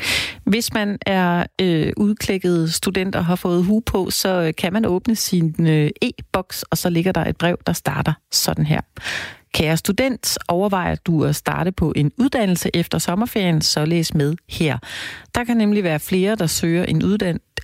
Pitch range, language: 160-200 Hz, Danish